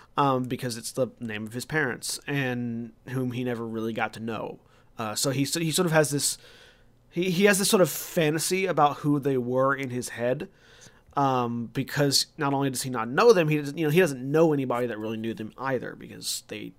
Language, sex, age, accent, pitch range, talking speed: English, male, 30-49, American, 115-140 Hz, 220 wpm